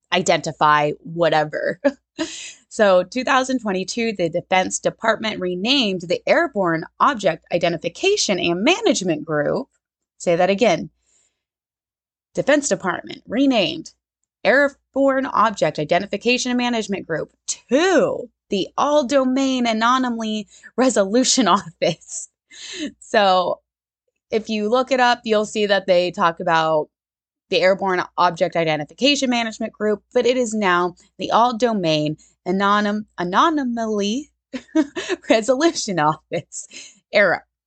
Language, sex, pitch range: English, female, 175-255 Hz